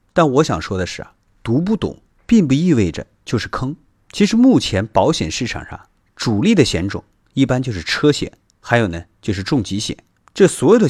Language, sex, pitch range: Chinese, male, 95-150 Hz